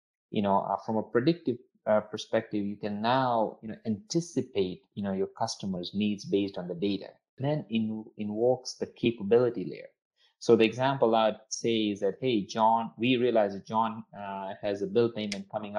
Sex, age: male, 20-39